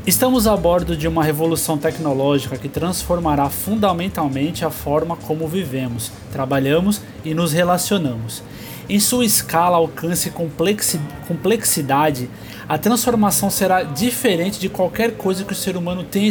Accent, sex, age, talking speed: Brazilian, male, 20-39, 130 wpm